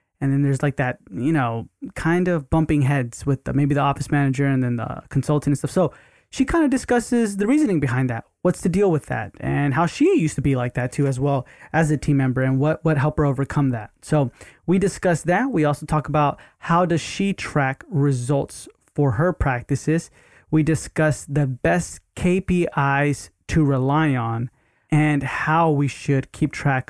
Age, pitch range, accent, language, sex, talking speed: 20-39, 135-155 Hz, American, English, male, 195 wpm